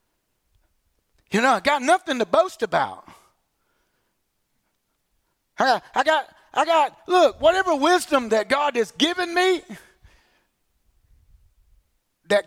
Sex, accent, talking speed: male, American, 110 wpm